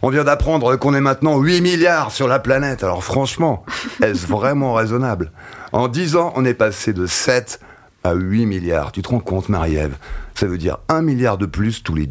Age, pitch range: 40-59, 105-150 Hz